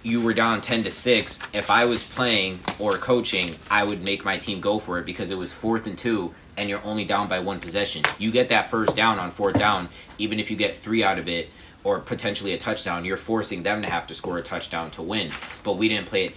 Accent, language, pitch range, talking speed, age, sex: American, English, 95-110 Hz, 255 wpm, 20-39, male